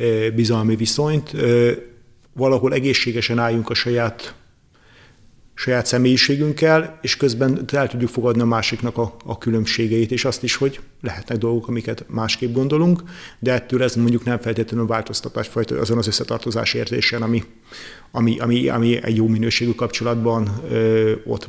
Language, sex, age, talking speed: Hungarian, male, 40-59, 135 wpm